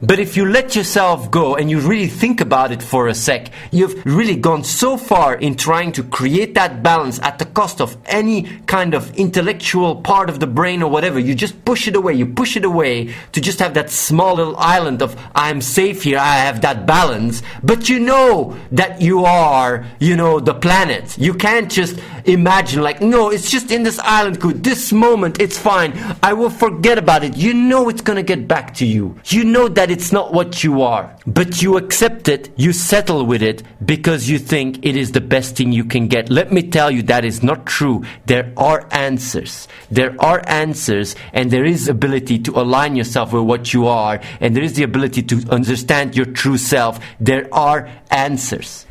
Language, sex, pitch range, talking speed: English, male, 130-190 Hz, 205 wpm